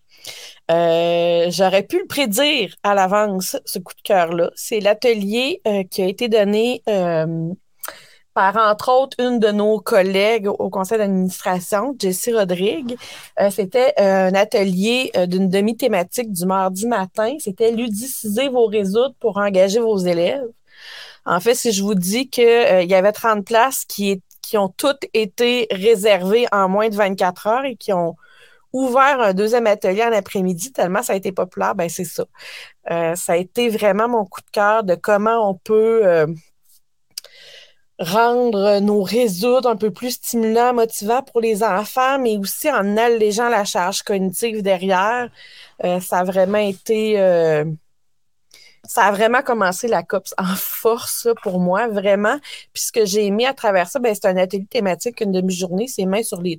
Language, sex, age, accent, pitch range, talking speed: French, female, 30-49, Canadian, 190-235 Hz, 165 wpm